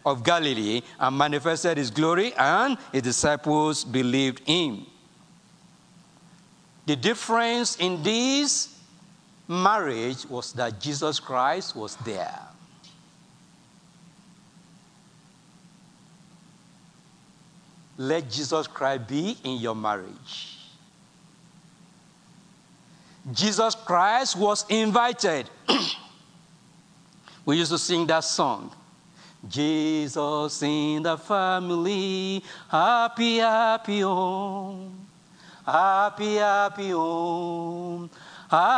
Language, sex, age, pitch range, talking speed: English, male, 60-79, 160-195 Hz, 95 wpm